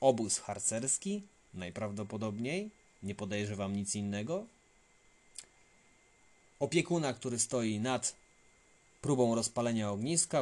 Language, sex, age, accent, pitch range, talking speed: Polish, male, 30-49, native, 105-130 Hz, 80 wpm